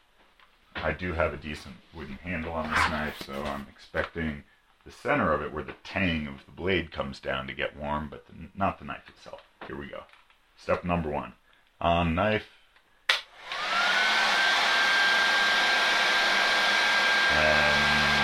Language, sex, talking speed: English, male, 145 wpm